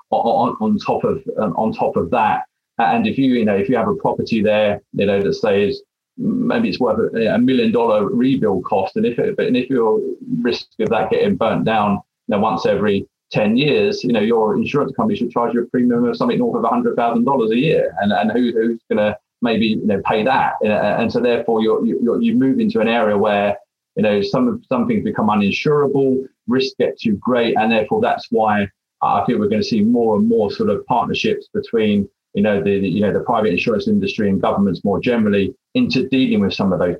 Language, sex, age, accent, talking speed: English, male, 30-49, British, 230 wpm